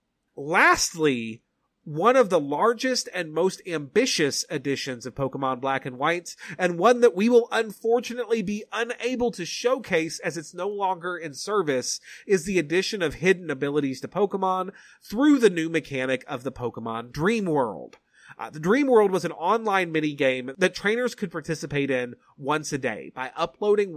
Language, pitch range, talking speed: English, 140-205 Hz, 165 wpm